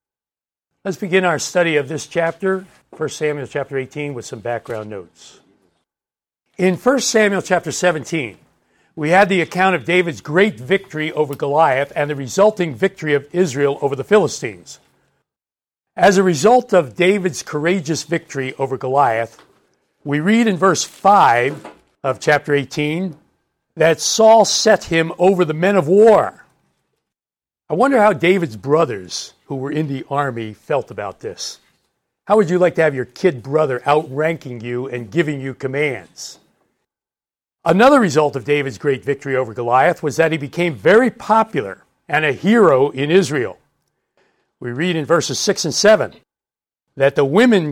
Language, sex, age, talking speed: English, male, 60-79, 155 wpm